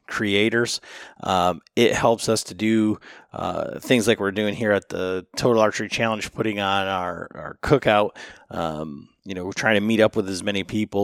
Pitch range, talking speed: 100-115 Hz, 190 wpm